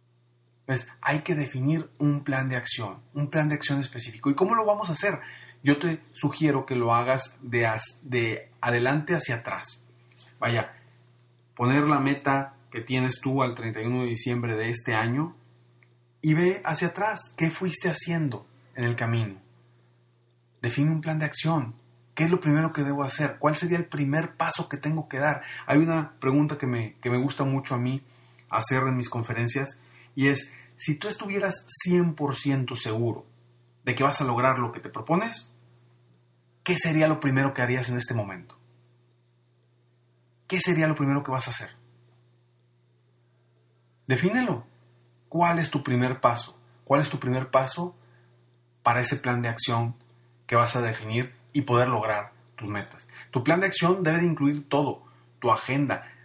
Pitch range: 120-145 Hz